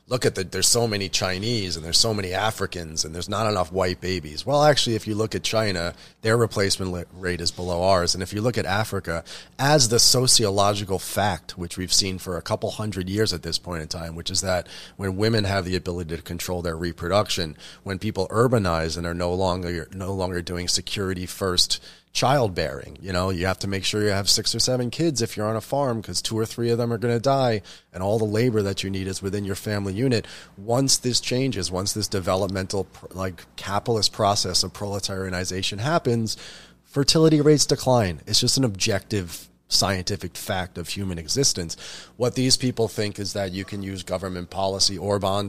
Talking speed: 205 wpm